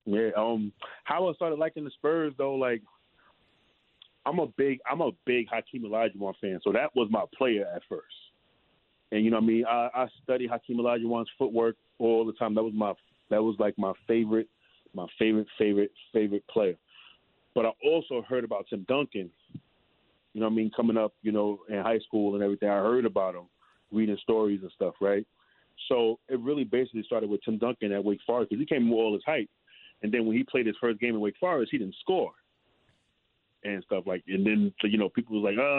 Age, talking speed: 30-49, 215 wpm